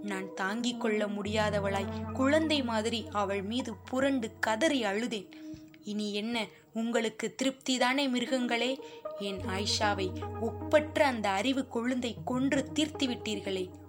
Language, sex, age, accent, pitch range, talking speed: Tamil, female, 20-39, native, 205-250 Hz, 105 wpm